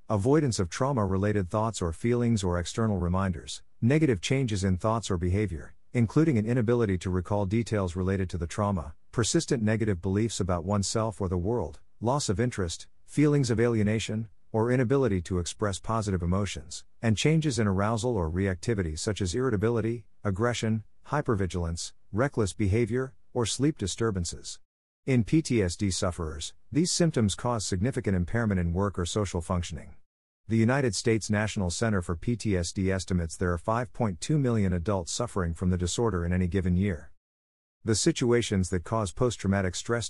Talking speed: 155 wpm